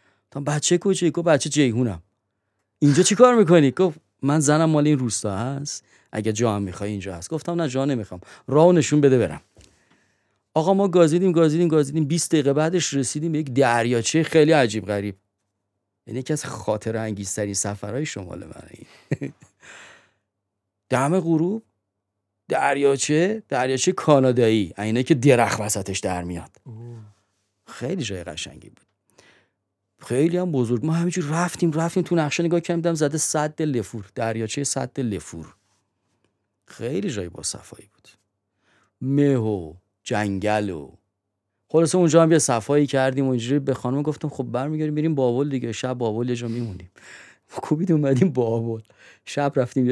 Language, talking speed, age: Persian, 145 wpm, 30-49